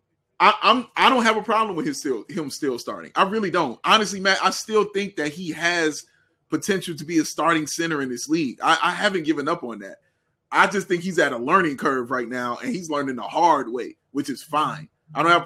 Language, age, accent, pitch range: English, 20-39, American, 140-180 Hz